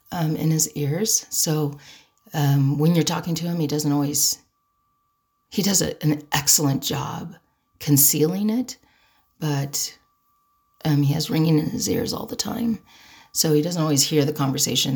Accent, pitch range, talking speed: American, 145-170 Hz, 155 wpm